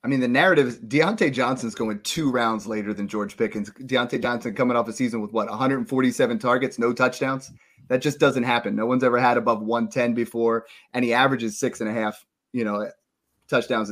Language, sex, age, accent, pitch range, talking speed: English, male, 30-49, American, 115-140 Hz, 205 wpm